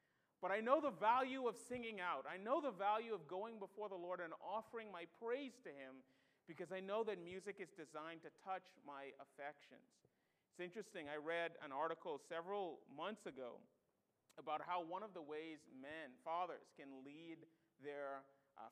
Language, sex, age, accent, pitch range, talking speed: English, male, 40-59, American, 150-205 Hz, 175 wpm